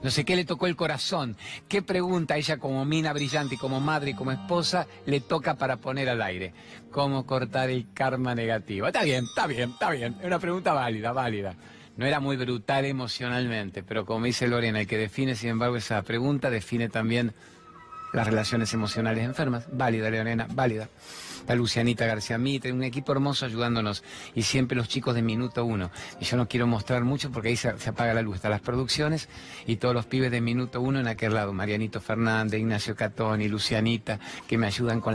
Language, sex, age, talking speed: Spanish, male, 50-69, 200 wpm